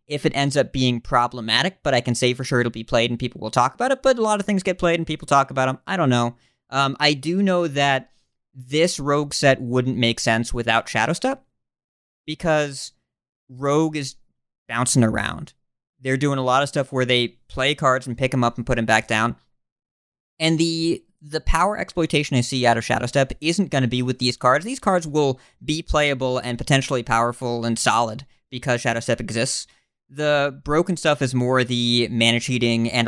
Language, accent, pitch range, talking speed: English, American, 120-150 Hz, 205 wpm